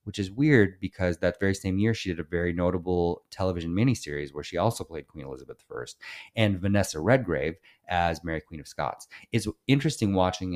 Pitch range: 85-105 Hz